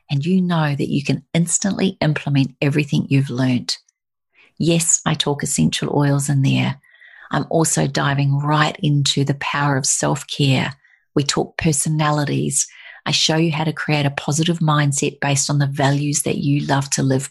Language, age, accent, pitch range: English, 40-59, Australian, 140-160 Hz